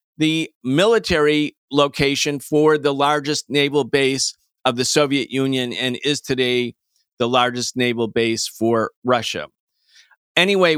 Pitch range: 140-175 Hz